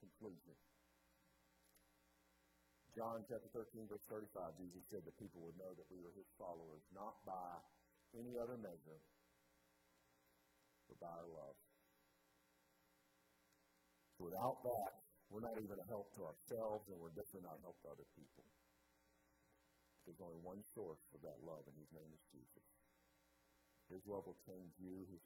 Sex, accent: male, American